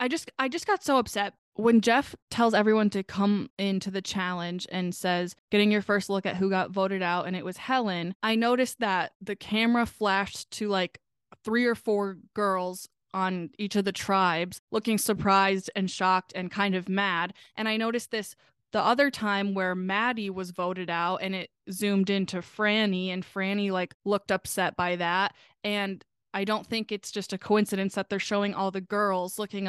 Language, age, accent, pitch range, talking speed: English, 20-39, American, 190-220 Hz, 190 wpm